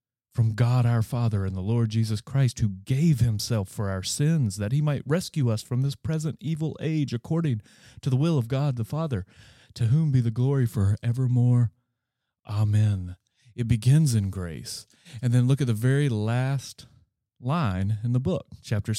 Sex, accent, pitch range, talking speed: male, American, 105-140 Hz, 180 wpm